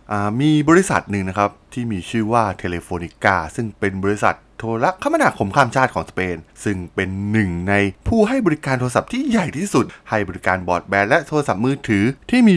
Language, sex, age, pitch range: Thai, male, 20-39, 95-145 Hz